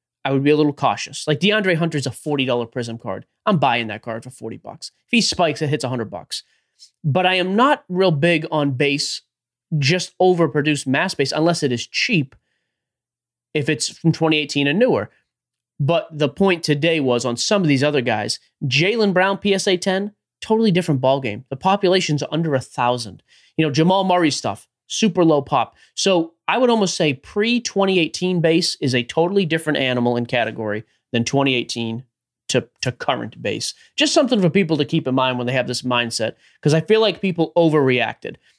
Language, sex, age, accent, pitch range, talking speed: English, male, 30-49, American, 130-180 Hz, 185 wpm